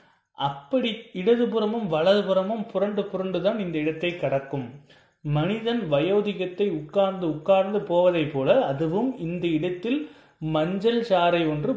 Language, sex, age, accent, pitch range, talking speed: Tamil, male, 30-49, native, 145-195 Hz, 100 wpm